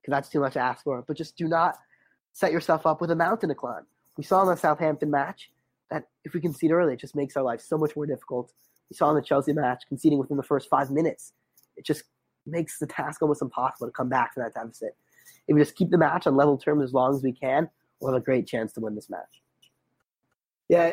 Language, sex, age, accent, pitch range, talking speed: English, male, 20-39, American, 130-155 Hz, 250 wpm